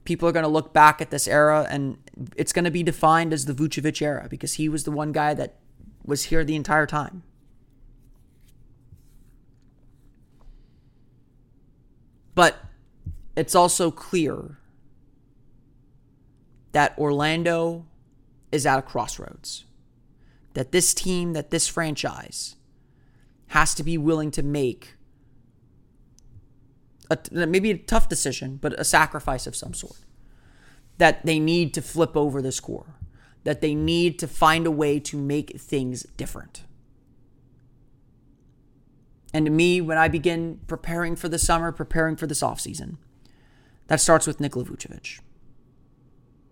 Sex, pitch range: male, 130-160 Hz